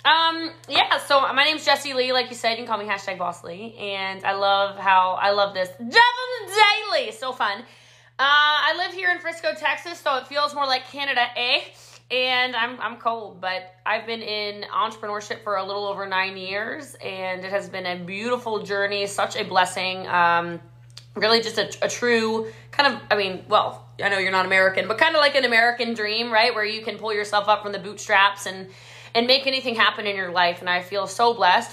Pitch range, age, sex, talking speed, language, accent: 185-230 Hz, 20-39, female, 215 wpm, English, American